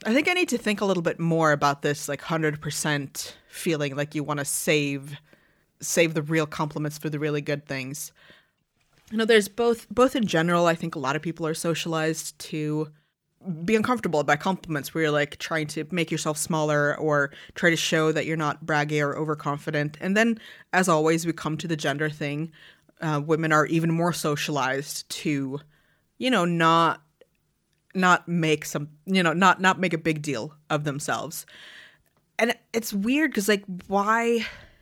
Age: 20-39